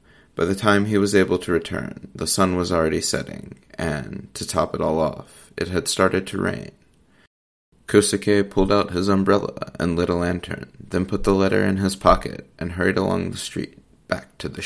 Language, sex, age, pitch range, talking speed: English, male, 30-49, 85-100 Hz, 195 wpm